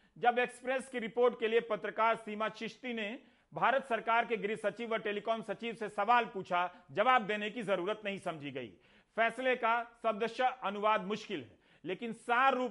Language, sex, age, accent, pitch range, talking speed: Hindi, male, 40-59, native, 185-230 Hz, 135 wpm